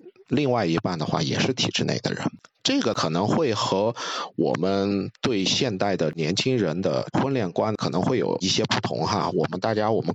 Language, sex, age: Chinese, male, 50-69